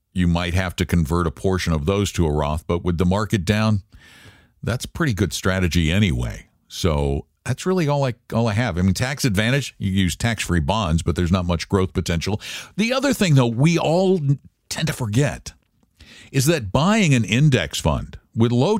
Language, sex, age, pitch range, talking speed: English, male, 50-69, 95-140 Hz, 190 wpm